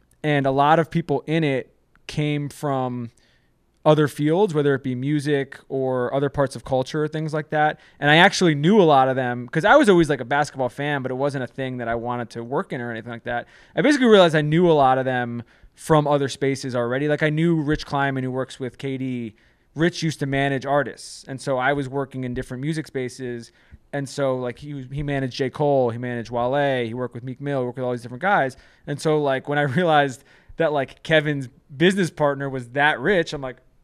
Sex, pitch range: male, 130-155 Hz